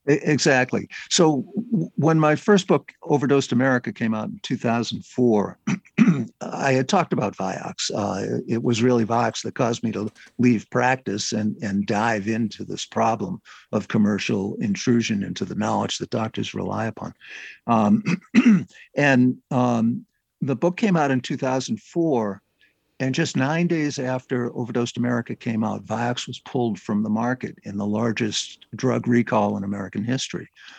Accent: American